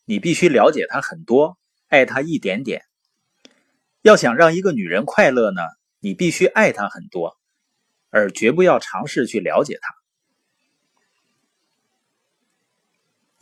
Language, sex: Chinese, male